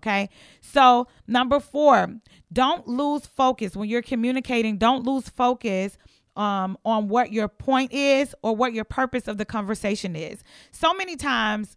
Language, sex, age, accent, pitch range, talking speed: English, female, 30-49, American, 200-255 Hz, 155 wpm